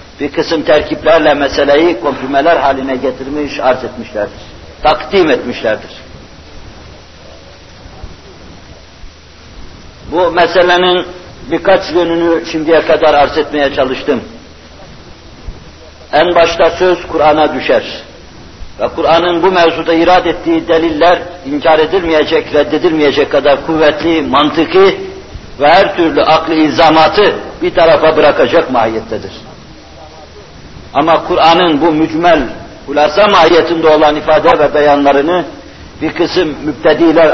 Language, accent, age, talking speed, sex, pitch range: Turkish, native, 60-79, 95 wpm, male, 135-165 Hz